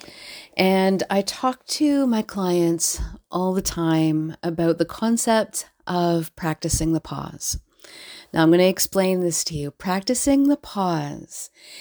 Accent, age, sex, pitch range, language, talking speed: American, 40-59, female, 160-195 Hz, English, 135 wpm